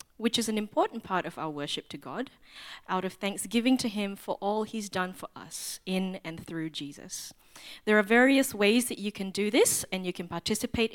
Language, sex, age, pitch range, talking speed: English, female, 20-39, 180-235 Hz, 210 wpm